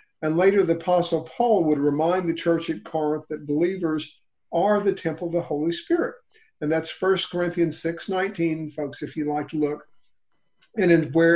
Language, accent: English, American